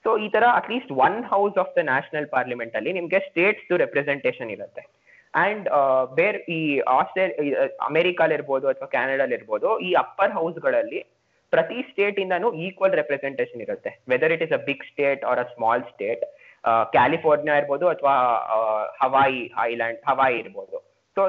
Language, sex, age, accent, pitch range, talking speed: Kannada, male, 20-39, native, 135-215 Hz, 170 wpm